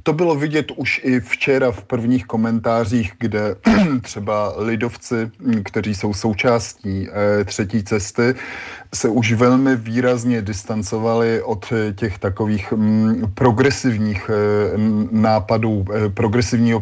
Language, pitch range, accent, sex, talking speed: Czech, 105-120 Hz, native, male, 100 wpm